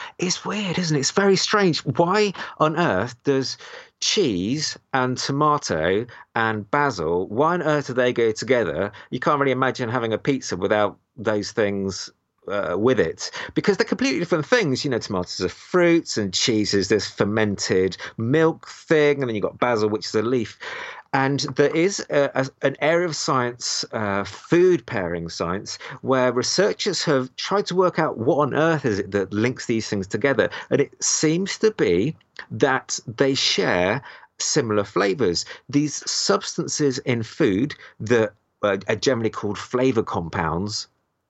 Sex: male